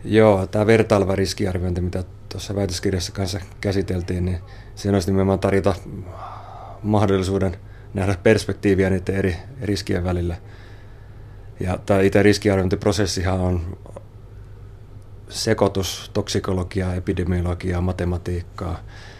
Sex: male